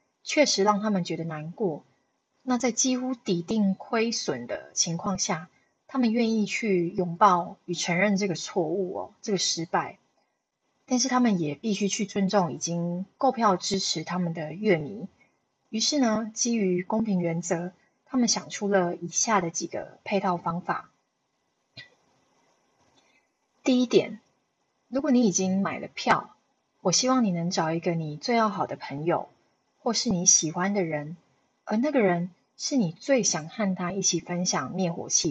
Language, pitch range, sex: Chinese, 175-225 Hz, female